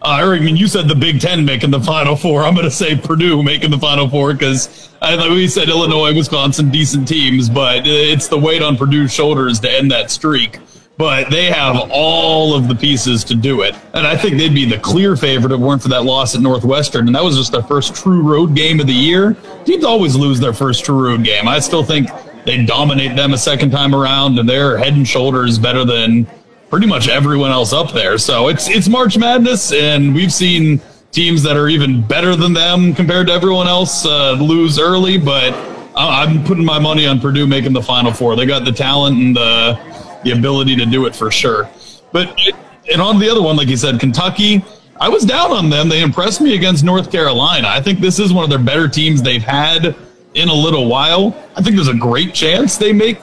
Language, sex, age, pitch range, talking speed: English, male, 30-49, 135-175 Hz, 225 wpm